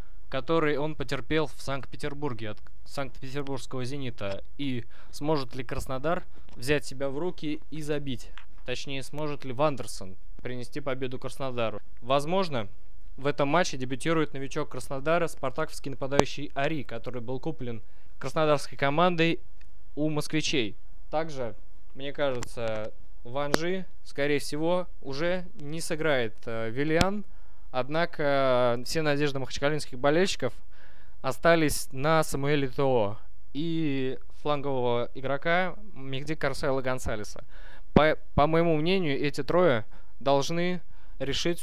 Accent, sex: native, male